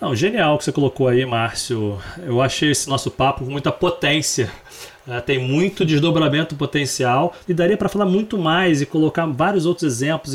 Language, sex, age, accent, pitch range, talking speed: Portuguese, male, 30-49, Brazilian, 135-175 Hz, 185 wpm